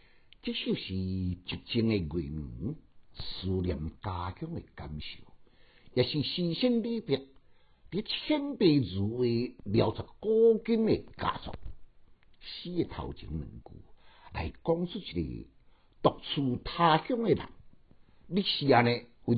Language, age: Chinese, 60-79